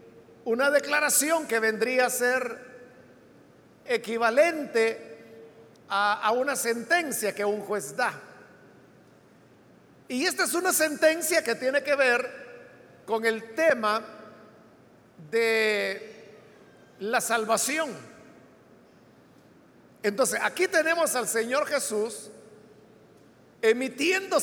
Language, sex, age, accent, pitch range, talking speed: Spanish, male, 50-69, Mexican, 215-285 Hz, 90 wpm